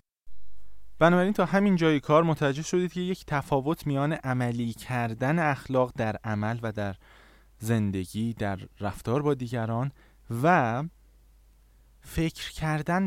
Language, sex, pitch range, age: Persian, male, 120-175 Hz, 20-39